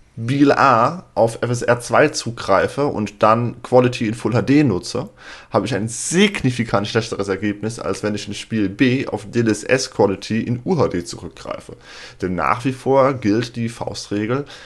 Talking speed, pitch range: 155 wpm, 100-125 Hz